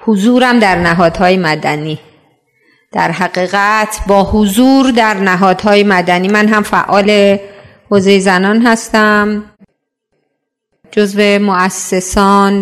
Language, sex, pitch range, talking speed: Persian, female, 180-230 Hz, 90 wpm